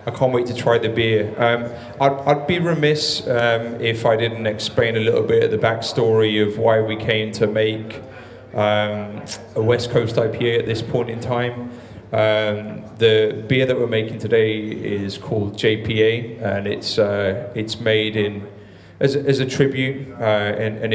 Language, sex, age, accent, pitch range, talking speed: English, male, 20-39, British, 105-115 Hz, 180 wpm